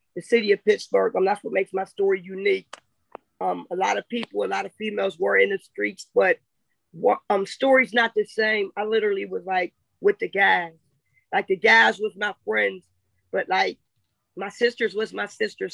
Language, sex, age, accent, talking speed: English, female, 20-39, American, 200 wpm